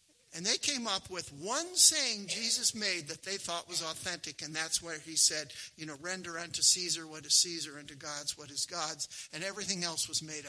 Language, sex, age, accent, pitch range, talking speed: English, male, 60-79, American, 155-220 Hz, 210 wpm